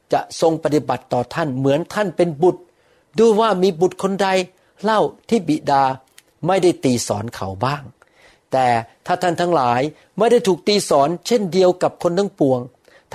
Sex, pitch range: male, 135-185 Hz